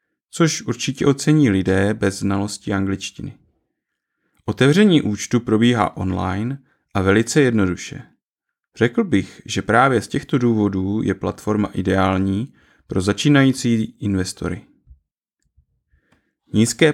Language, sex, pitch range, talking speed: Czech, male, 100-125 Hz, 100 wpm